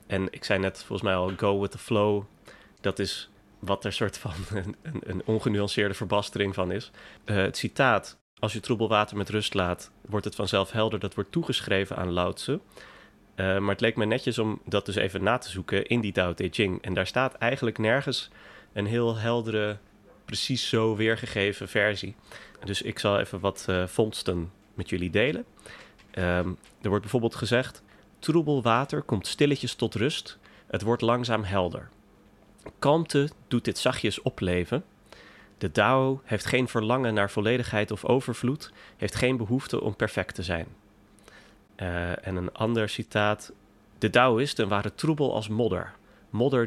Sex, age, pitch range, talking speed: male, 30-49, 100-120 Hz, 170 wpm